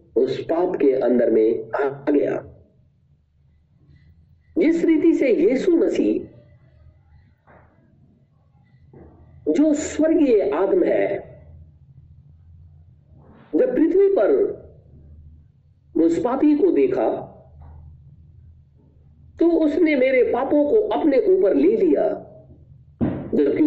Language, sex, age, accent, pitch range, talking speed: Hindi, male, 50-69, native, 290-390 Hz, 85 wpm